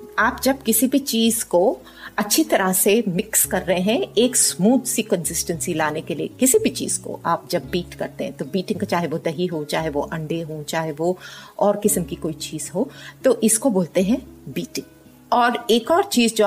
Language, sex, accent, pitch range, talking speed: Hindi, female, native, 185-225 Hz, 210 wpm